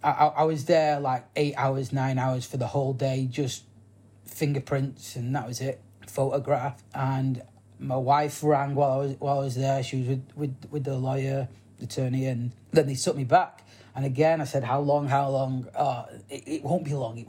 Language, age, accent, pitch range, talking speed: English, 30-49, British, 125-150 Hz, 210 wpm